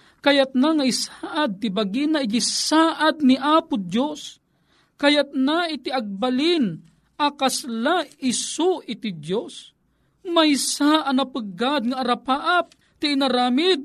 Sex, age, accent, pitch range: male, 40-59, native, 190-265 Hz